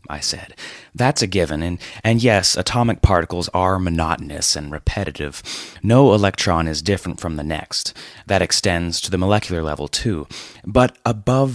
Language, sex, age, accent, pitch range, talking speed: English, male, 30-49, American, 85-115 Hz, 155 wpm